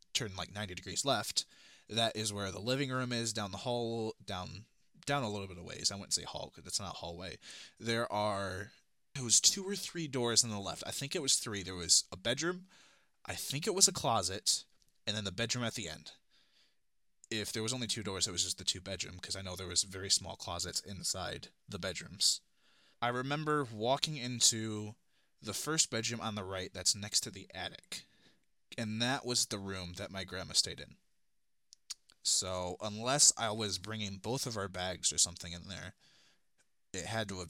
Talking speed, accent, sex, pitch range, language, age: 205 wpm, American, male, 95-115 Hz, English, 20-39